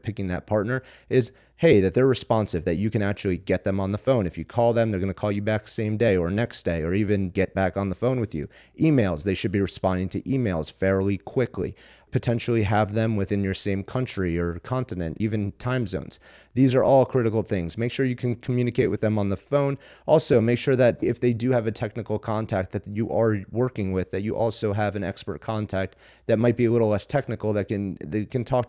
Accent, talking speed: American, 235 wpm